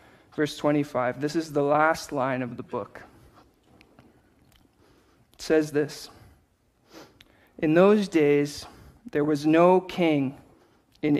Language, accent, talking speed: English, American, 115 wpm